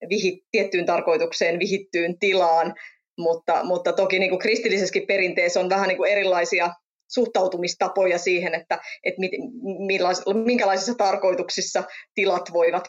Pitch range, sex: 175-200 Hz, female